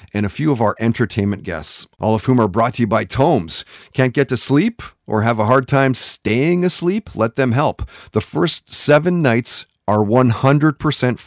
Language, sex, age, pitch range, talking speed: English, male, 30-49, 100-135 Hz, 190 wpm